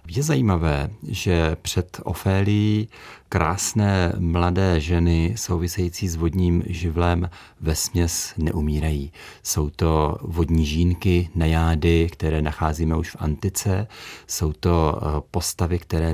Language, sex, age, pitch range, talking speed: Czech, male, 40-59, 80-90 Hz, 110 wpm